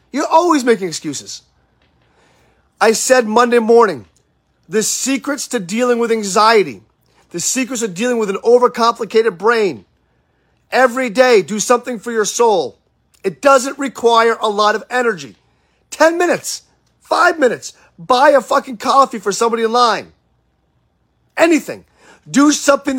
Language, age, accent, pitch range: English, 40-59, American, 195-260 Hz